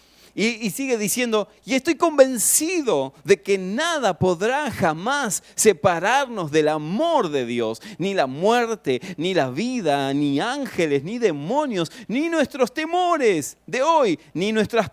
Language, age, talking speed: Spanish, 40-59, 135 wpm